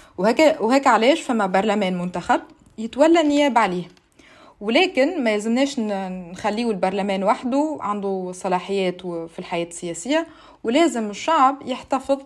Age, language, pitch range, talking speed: 20-39, Arabic, 190-255 Hz, 115 wpm